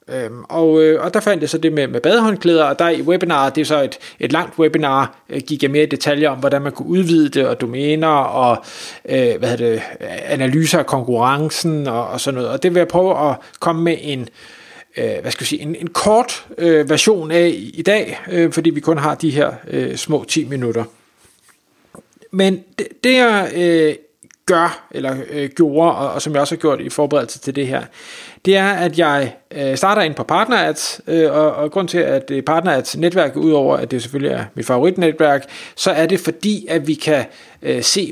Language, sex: Danish, male